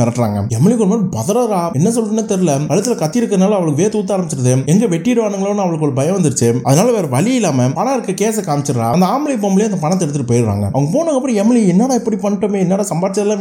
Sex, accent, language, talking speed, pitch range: male, native, Tamil, 200 wpm, 160-230 Hz